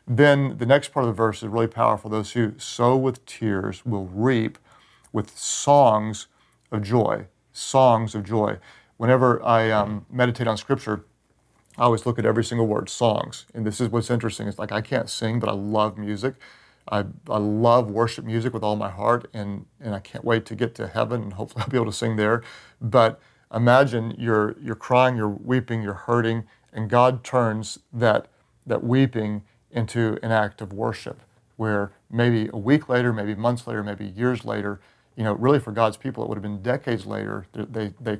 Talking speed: 195 wpm